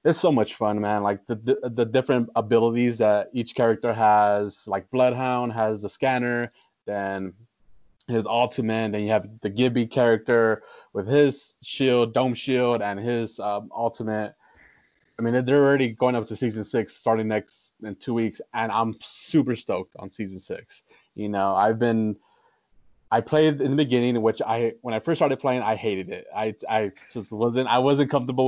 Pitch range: 105-125 Hz